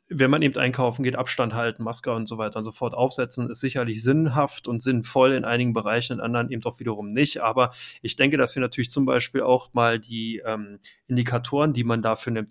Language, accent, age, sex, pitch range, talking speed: German, German, 30-49, male, 120-140 Hz, 215 wpm